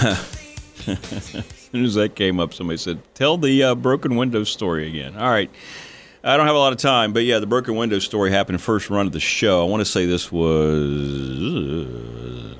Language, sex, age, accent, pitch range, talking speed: English, male, 40-59, American, 80-125 Hz, 215 wpm